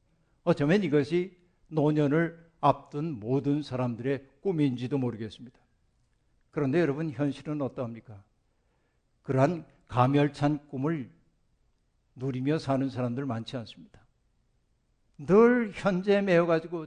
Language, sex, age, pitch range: Korean, male, 60-79, 140-185 Hz